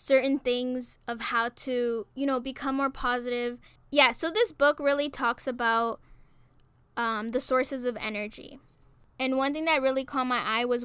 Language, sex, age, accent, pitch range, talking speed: English, female, 10-29, American, 235-270 Hz, 170 wpm